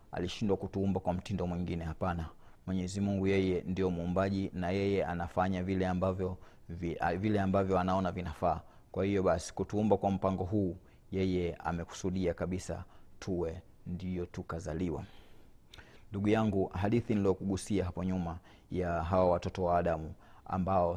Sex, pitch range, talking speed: male, 90-100 Hz, 135 wpm